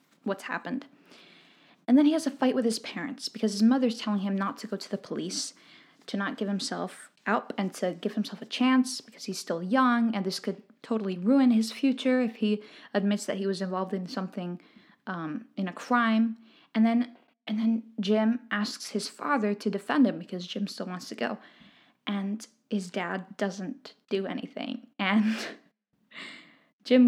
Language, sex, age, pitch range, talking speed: English, female, 10-29, 195-240 Hz, 180 wpm